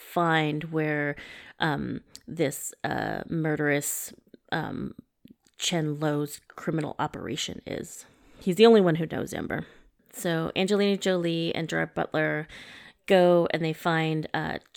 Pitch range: 160-200 Hz